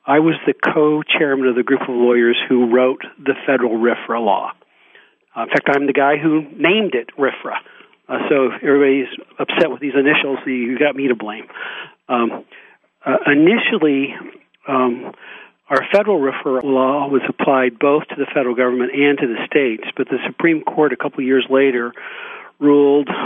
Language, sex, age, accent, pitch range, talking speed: English, male, 50-69, American, 130-160 Hz, 175 wpm